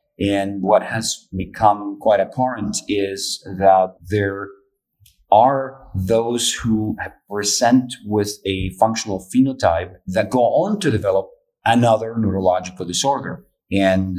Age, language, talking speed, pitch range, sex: 40-59, English, 110 wpm, 95-110 Hz, male